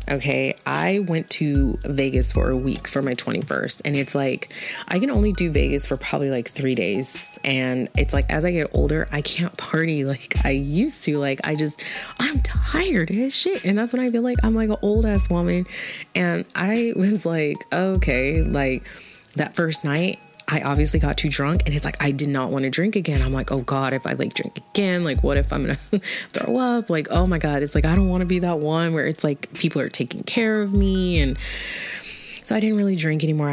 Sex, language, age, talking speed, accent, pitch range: female, English, 20-39, 225 wpm, American, 135-180 Hz